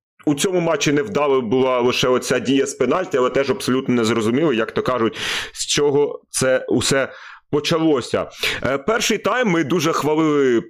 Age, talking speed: 30-49, 165 wpm